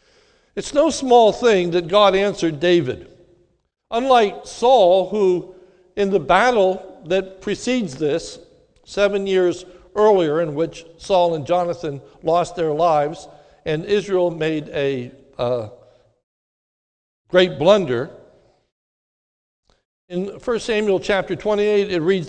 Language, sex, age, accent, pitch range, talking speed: English, male, 60-79, American, 180-235 Hz, 115 wpm